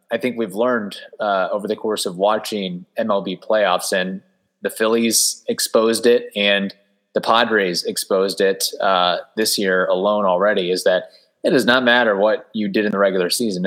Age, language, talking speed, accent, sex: 20-39, English, 175 wpm, American, male